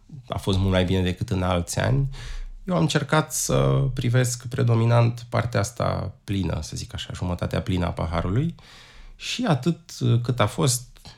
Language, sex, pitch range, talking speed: Romanian, male, 95-125 Hz, 160 wpm